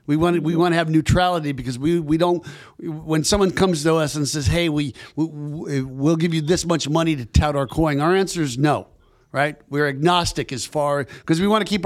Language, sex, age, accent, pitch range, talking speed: English, male, 60-79, American, 135-170 Hz, 235 wpm